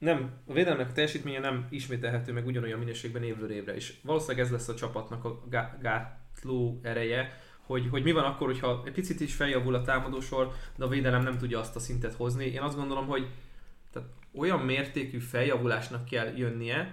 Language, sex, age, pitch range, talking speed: Hungarian, male, 20-39, 120-150 Hz, 180 wpm